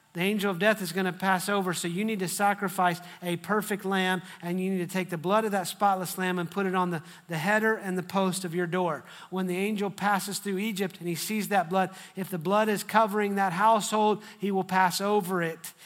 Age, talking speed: 40-59, 240 wpm